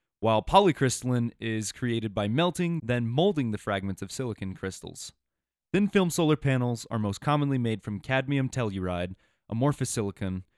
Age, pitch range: 20-39, 100-130 Hz